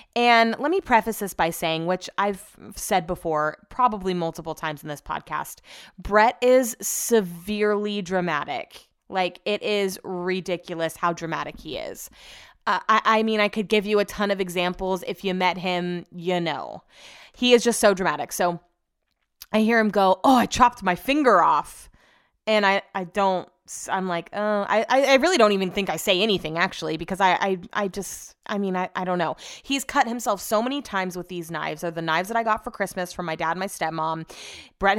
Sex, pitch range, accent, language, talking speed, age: female, 175-225 Hz, American, English, 200 wpm, 20-39